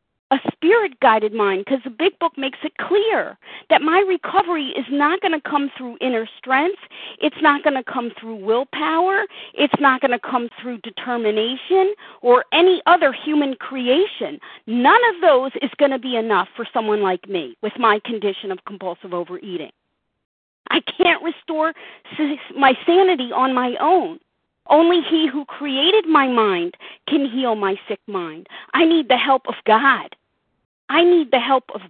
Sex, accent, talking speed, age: female, American, 165 wpm, 40-59